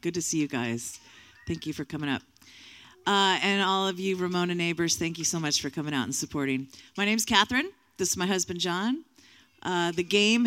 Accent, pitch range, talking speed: American, 150-195 Hz, 210 wpm